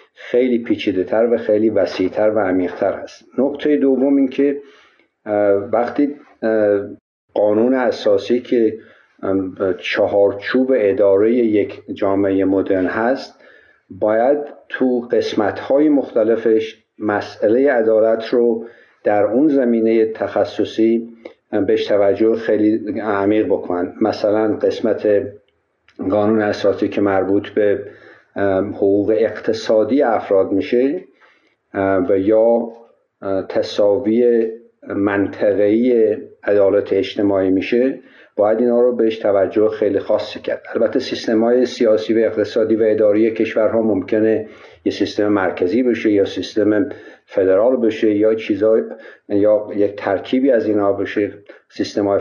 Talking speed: 105 wpm